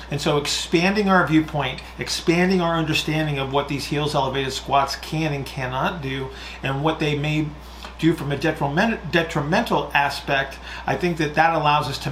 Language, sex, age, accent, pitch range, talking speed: English, male, 40-59, American, 135-160 Hz, 170 wpm